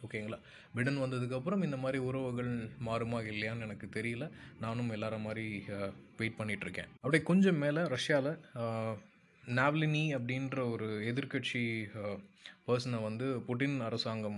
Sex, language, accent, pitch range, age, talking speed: male, Tamil, native, 110-130 Hz, 20-39, 115 wpm